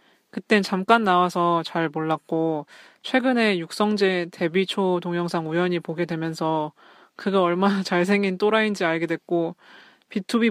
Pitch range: 170-205 Hz